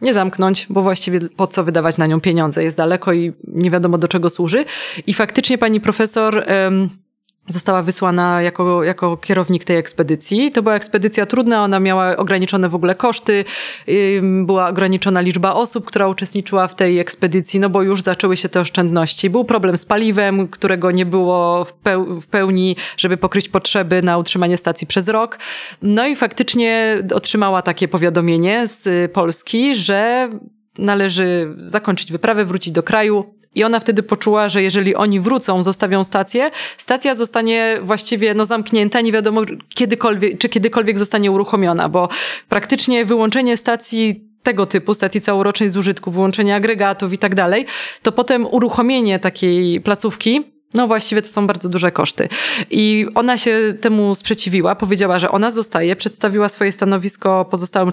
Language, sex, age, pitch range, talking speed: Polish, female, 20-39, 185-220 Hz, 155 wpm